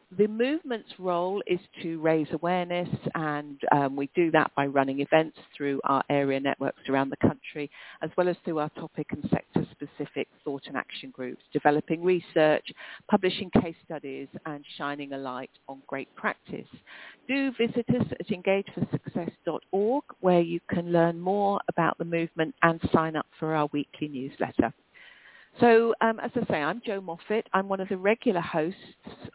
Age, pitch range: 50-69, 150-185 Hz